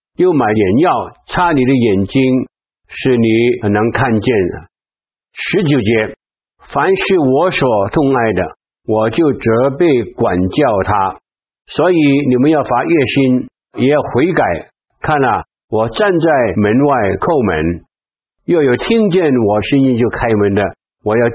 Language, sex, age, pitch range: Chinese, male, 60-79, 110-145 Hz